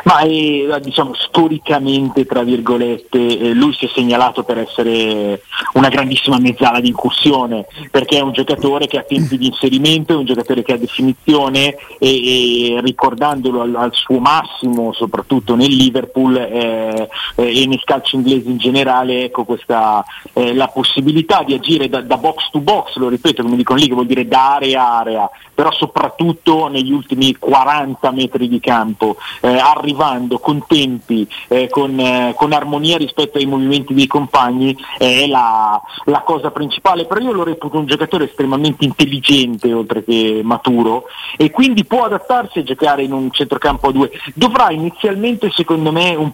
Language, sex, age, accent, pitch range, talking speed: Italian, male, 40-59, native, 125-150 Hz, 165 wpm